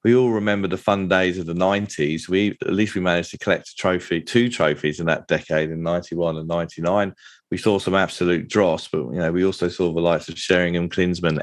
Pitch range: 90-110 Hz